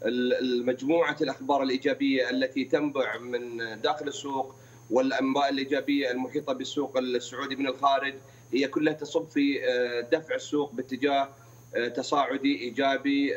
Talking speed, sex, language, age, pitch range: 110 wpm, male, Arabic, 40-59, 125-145 Hz